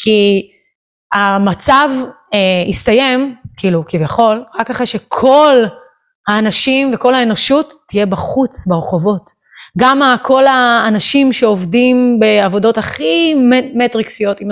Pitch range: 205-270 Hz